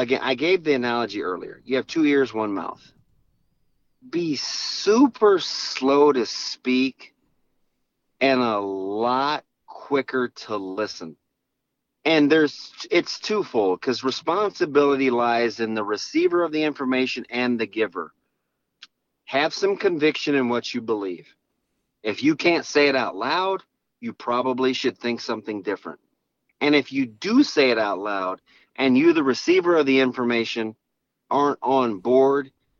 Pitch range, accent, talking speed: 115-145 Hz, American, 140 wpm